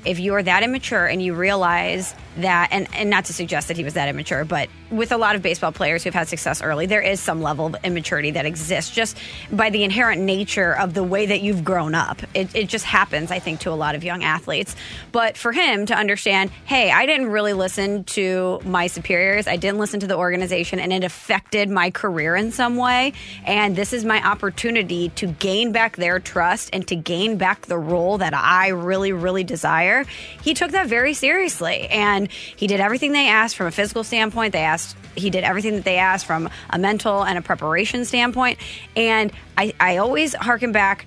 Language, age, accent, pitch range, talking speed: English, 20-39, American, 180-225 Hz, 215 wpm